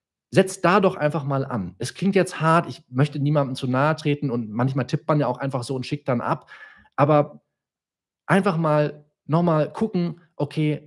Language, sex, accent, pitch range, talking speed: German, male, German, 125-150 Hz, 190 wpm